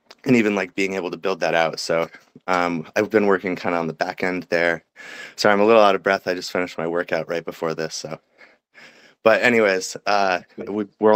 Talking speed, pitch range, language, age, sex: 220 wpm, 80-95 Hz, English, 20-39, male